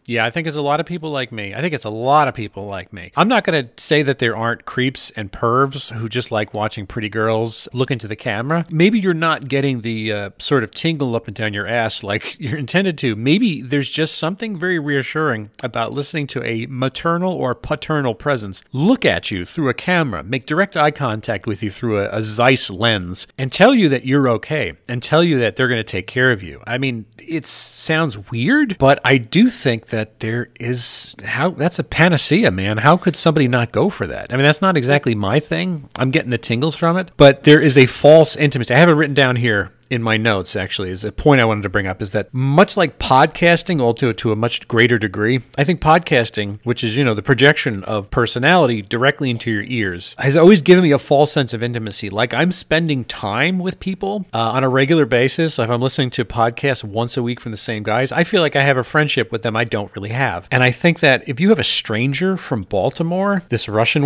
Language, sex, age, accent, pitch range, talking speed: English, male, 40-59, American, 115-155 Hz, 235 wpm